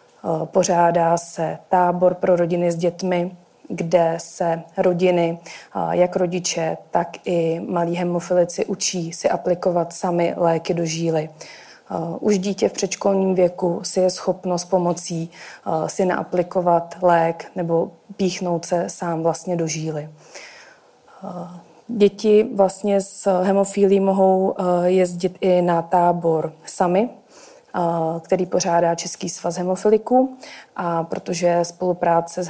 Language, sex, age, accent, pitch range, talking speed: Czech, female, 30-49, native, 170-195 Hz, 115 wpm